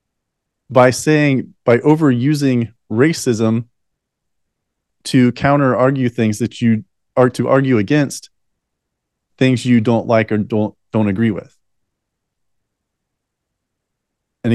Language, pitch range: English, 115-140 Hz